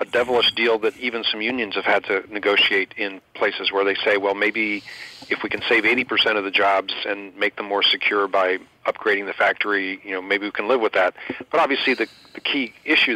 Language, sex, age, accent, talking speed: English, male, 40-59, American, 230 wpm